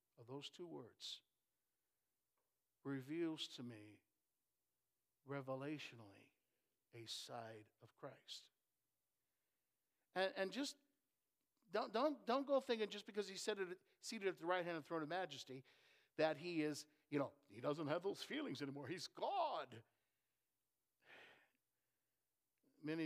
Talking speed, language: 130 wpm, English